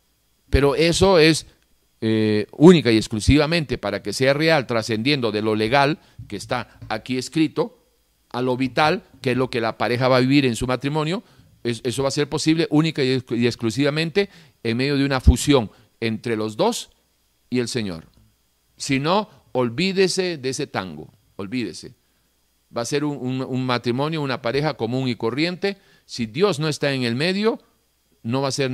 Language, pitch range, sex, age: Spanish, 115-160 Hz, male, 50-69